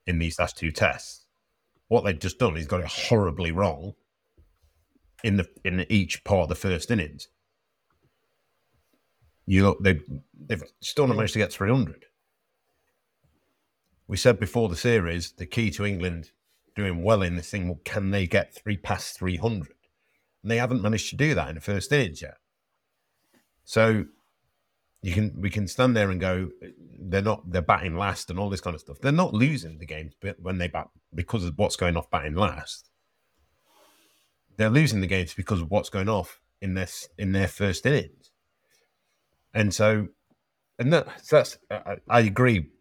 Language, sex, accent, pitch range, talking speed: English, male, British, 85-105 Hz, 180 wpm